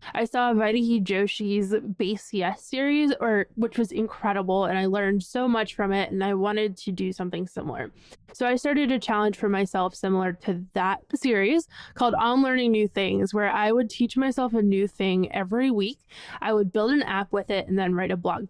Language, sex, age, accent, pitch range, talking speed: English, female, 20-39, American, 200-250 Hz, 205 wpm